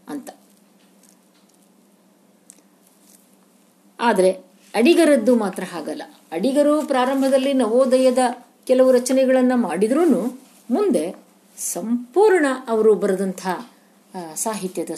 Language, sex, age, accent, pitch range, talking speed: Kannada, female, 50-69, native, 205-290 Hz, 60 wpm